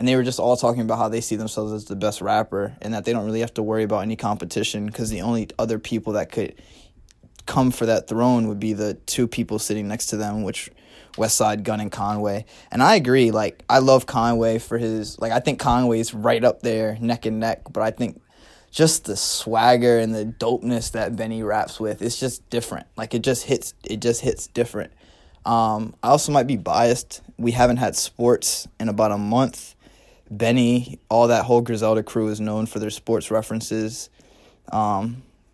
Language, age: English, 20-39